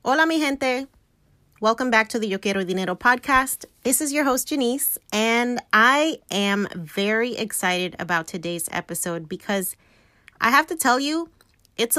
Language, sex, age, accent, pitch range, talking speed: English, female, 30-49, American, 185-235 Hz, 155 wpm